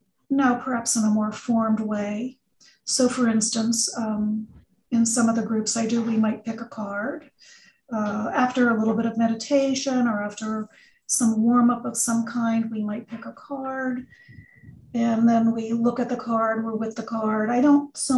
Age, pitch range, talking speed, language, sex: 40-59, 220-245 Hz, 190 wpm, English, female